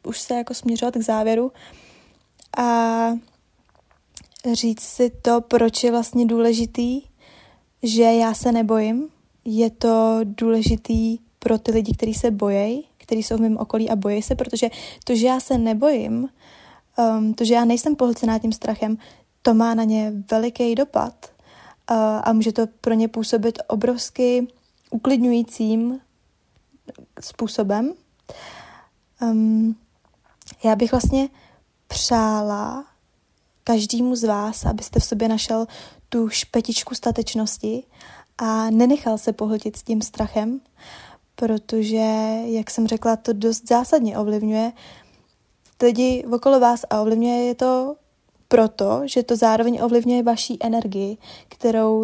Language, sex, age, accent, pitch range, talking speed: Czech, female, 20-39, native, 220-240 Hz, 125 wpm